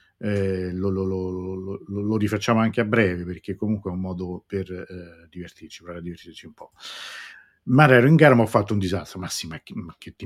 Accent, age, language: native, 50-69, Italian